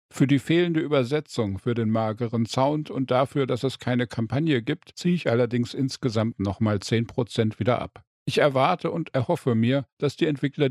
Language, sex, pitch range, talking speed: German, male, 115-145 Hz, 175 wpm